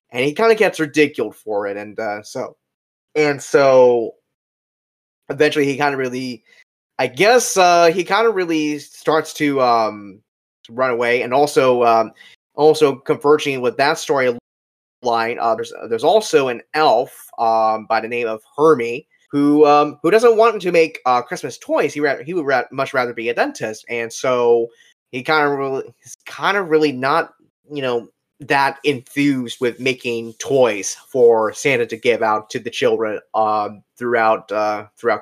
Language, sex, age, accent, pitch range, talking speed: English, male, 20-39, American, 115-160 Hz, 175 wpm